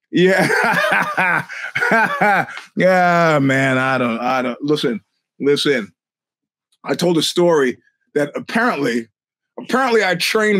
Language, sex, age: English, male, 30-49